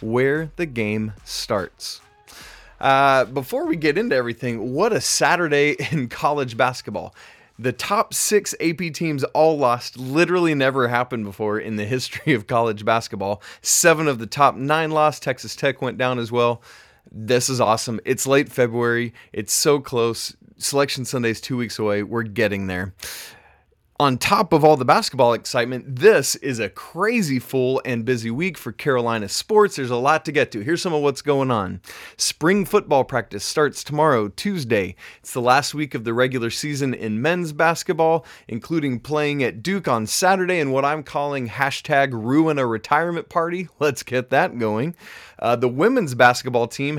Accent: American